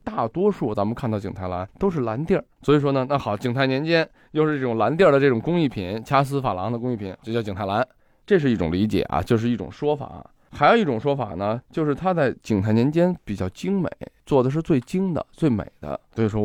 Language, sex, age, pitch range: Chinese, male, 20-39, 100-140 Hz